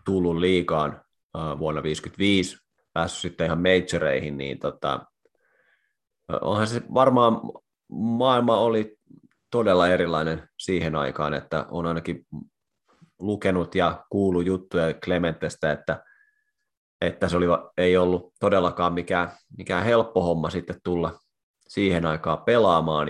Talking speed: 110 wpm